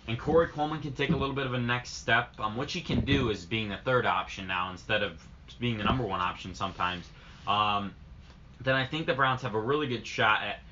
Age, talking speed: 20-39, 240 wpm